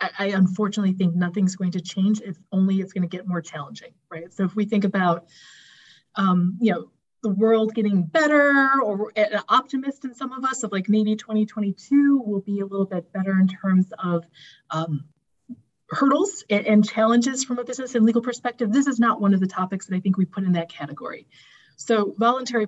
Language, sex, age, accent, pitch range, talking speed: English, female, 30-49, American, 185-225 Hz, 200 wpm